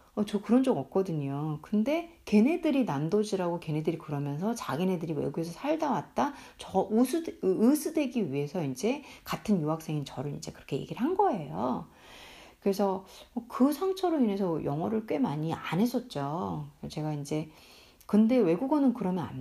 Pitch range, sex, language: 165-245 Hz, female, Korean